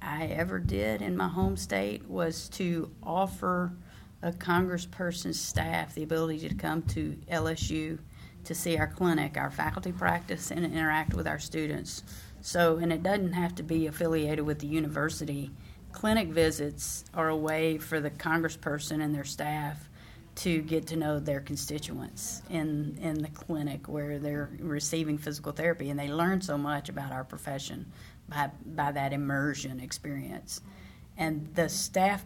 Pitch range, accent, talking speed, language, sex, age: 145-170 Hz, American, 155 wpm, English, female, 40-59